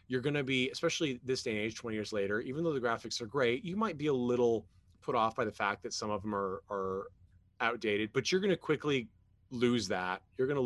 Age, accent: 30-49, American